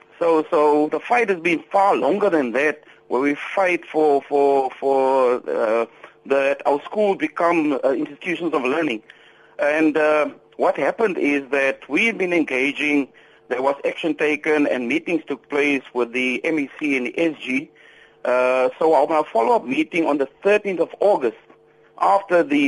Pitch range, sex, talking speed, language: 140-185 Hz, male, 160 wpm, English